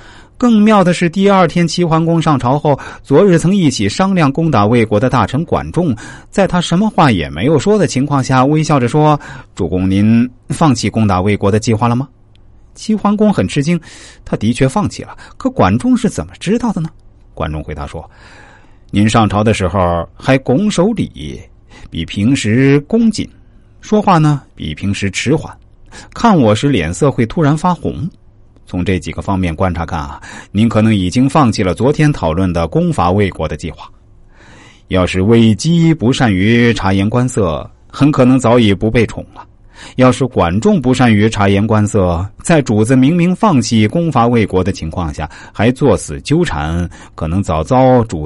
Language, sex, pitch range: Chinese, male, 95-145 Hz